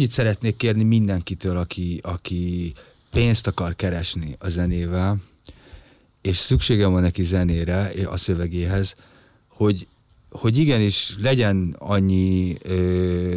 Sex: male